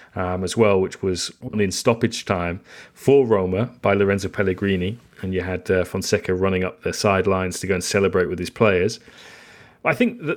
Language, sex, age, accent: English, male, 30-49, British